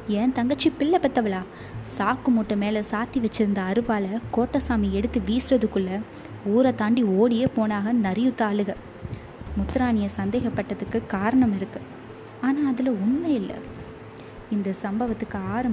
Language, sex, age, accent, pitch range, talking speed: Tamil, female, 20-39, native, 200-245 Hz, 110 wpm